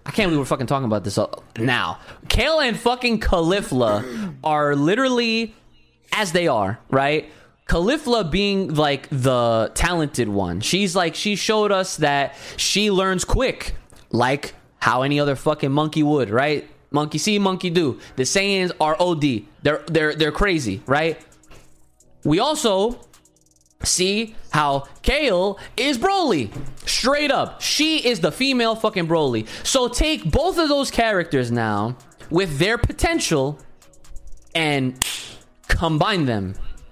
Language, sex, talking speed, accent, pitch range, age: English, male, 135 wpm, American, 135-200 Hz, 20-39